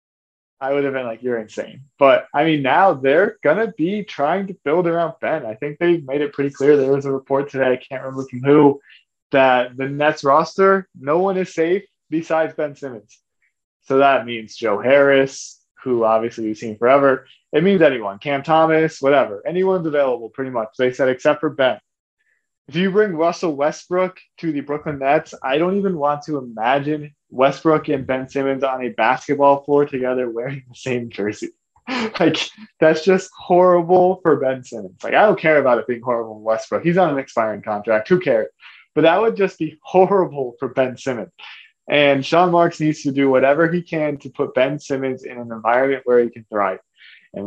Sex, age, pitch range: male, 20-39, 130-165 Hz